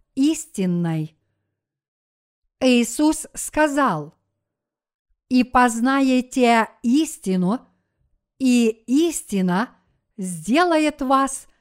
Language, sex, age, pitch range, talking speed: Russian, female, 50-69, 215-275 Hz, 50 wpm